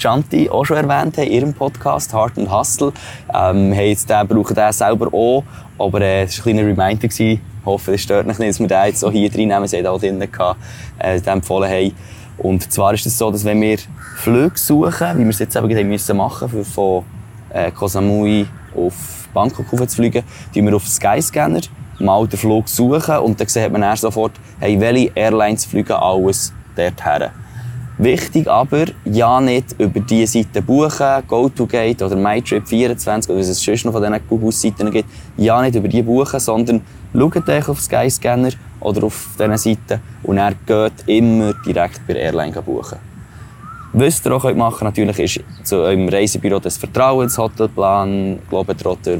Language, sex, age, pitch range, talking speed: German, male, 20-39, 100-120 Hz, 175 wpm